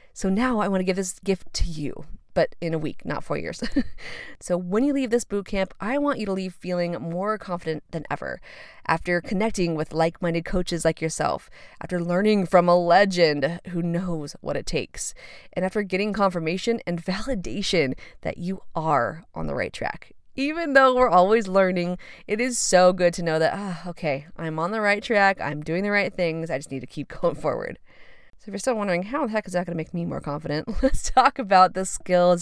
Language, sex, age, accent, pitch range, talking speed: English, female, 20-39, American, 165-215 Hz, 215 wpm